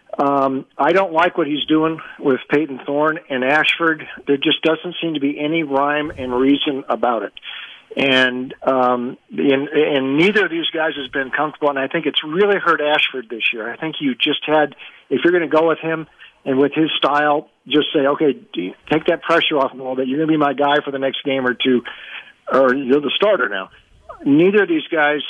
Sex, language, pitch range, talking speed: male, English, 130-160 Hz, 220 wpm